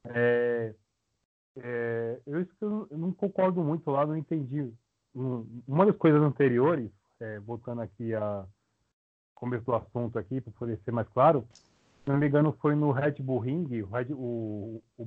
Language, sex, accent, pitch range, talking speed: Portuguese, male, Brazilian, 120-155 Hz, 165 wpm